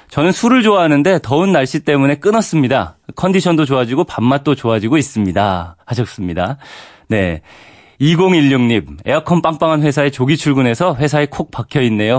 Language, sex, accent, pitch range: Korean, male, native, 110-160 Hz